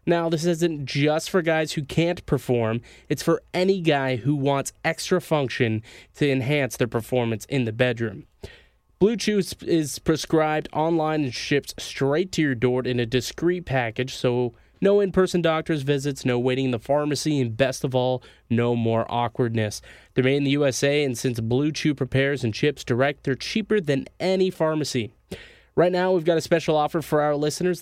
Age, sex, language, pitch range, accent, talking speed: 20-39, male, English, 125-160 Hz, American, 180 wpm